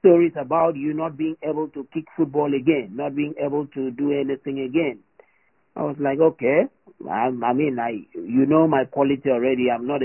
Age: 50-69